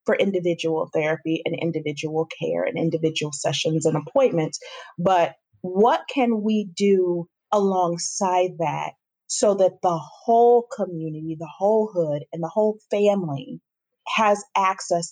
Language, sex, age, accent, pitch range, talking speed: English, female, 30-49, American, 170-215 Hz, 125 wpm